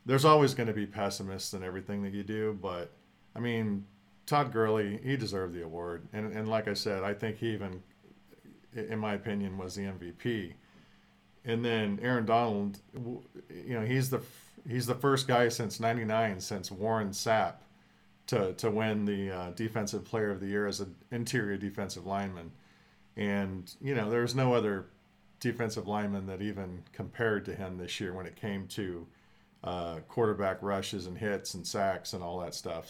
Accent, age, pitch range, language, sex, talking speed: American, 40-59, 95-115 Hz, English, male, 175 wpm